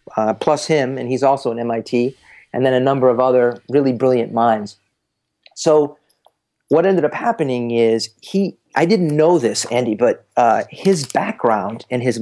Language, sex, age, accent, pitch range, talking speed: English, male, 40-59, American, 120-150 Hz, 170 wpm